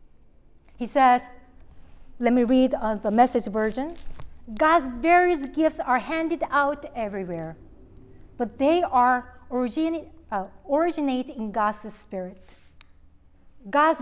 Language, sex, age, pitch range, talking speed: English, female, 40-59, 195-290 Hz, 105 wpm